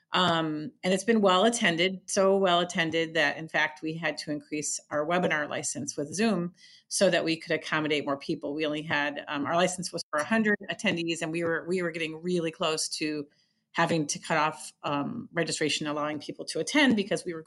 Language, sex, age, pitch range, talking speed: English, female, 40-59, 160-205 Hz, 205 wpm